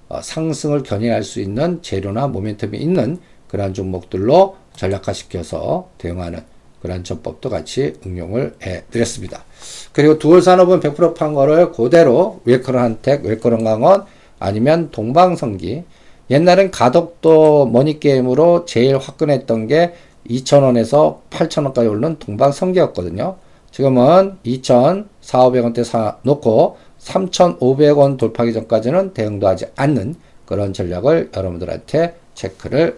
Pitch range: 110-155 Hz